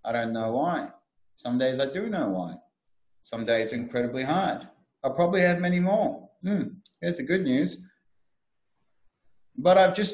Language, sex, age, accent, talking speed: English, male, 30-49, Australian, 165 wpm